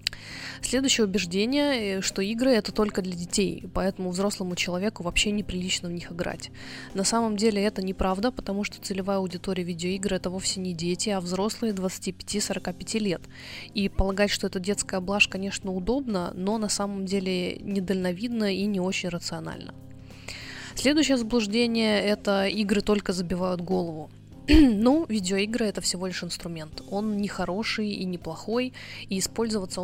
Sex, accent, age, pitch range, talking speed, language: female, native, 20-39, 180-210 Hz, 145 wpm, Russian